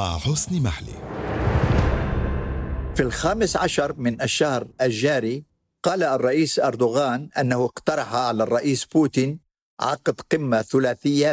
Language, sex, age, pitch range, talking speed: Arabic, male, 50-69, 115-140 Hz, 90 wpm